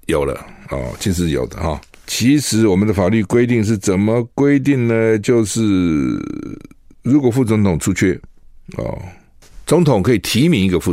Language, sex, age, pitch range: Chinese, male, 60-79, 80-115 Hz